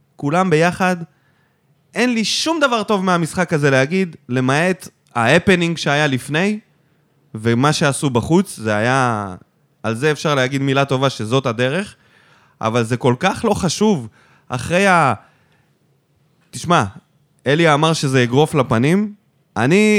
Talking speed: 125 wpm